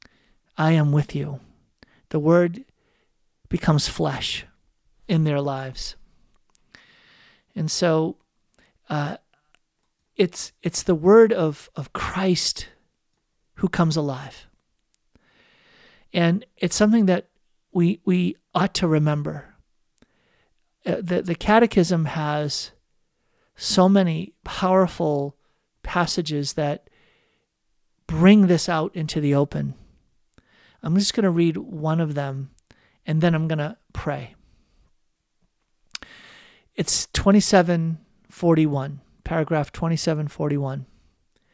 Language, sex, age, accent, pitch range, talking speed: English, male, 50-69, American, 150-180 Hz, 95 wpm